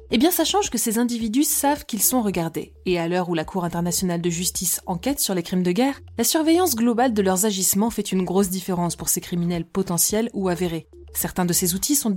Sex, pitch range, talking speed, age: female, 175-220 Hz, 230 wpm, 20-39